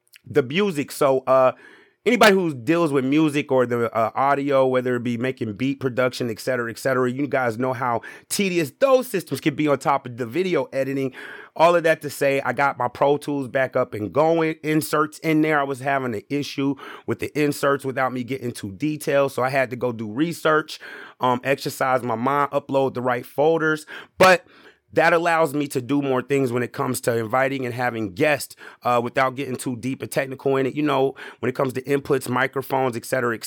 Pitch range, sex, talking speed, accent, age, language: 125-150 Hz, male, 210 wpm, American, 30-49, English